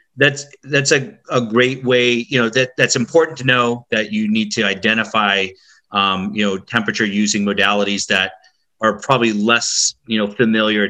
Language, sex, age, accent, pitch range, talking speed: English, male, 30-49, American, 105-130 Hz, 170 wpm